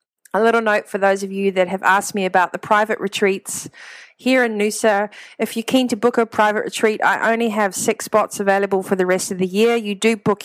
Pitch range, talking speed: 175-215 Hz, 235 wpm